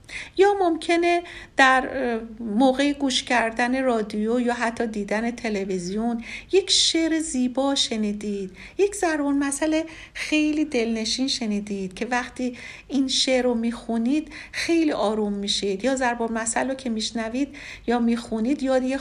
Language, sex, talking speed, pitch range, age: Persian, female, 125 wpm, 225-290 Hz, 50-69